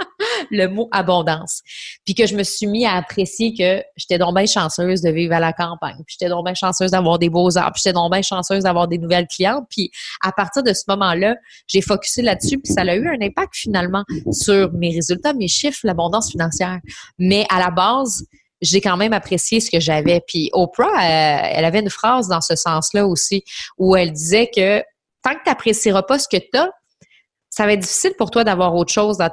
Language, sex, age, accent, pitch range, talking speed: French, female, 30-49, Canadian, 170-220 Hz, 215 wpm